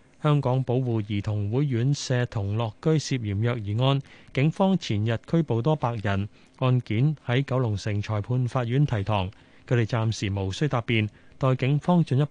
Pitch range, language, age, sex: 110-140 Hz, Chinese, 20-39, male